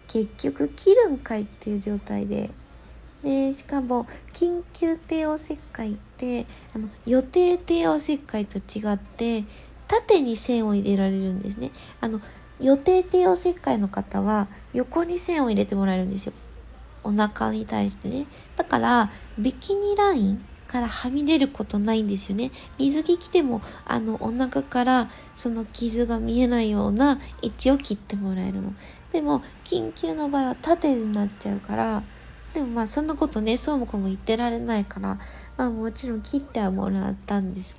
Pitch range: 205-280 Hz